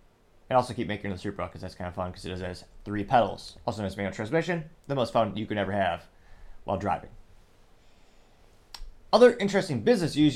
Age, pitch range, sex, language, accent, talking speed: 30-49, 105-140 Hz, male, English, American, 195 wpm